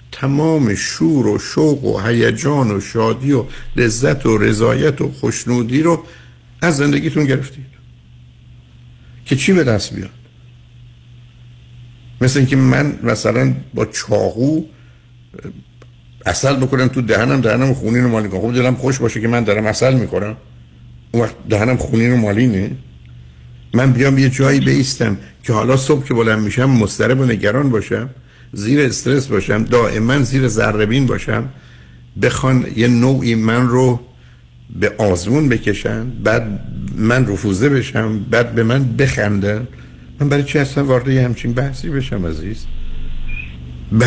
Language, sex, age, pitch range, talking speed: Persian, male, 60-79, 105-130 Hz, 140 wpm